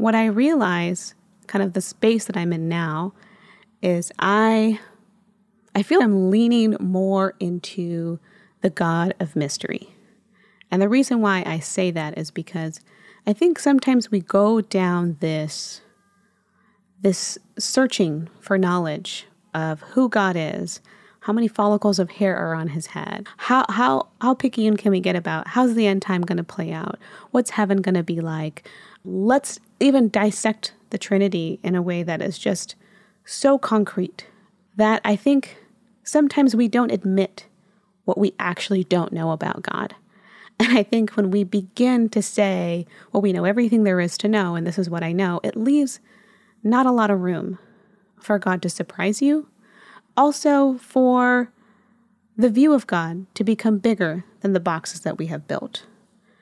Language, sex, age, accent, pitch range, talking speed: English, female, 20-39, American, 185-220 Hz, 165 wpm